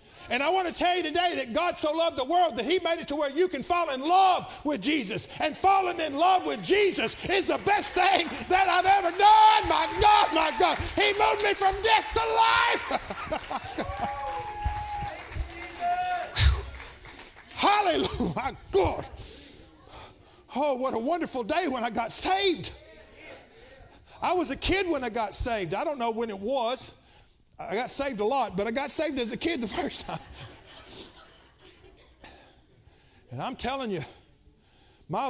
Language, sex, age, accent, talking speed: English, male, 50-69, American, 165 wpm